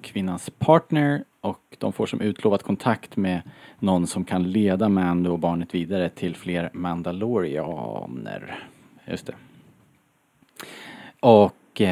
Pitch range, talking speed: 95-125 Hz, 115 wpm